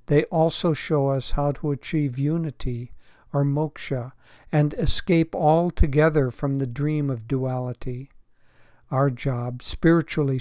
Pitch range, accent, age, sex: 130-155 Hz, American, 60-79, male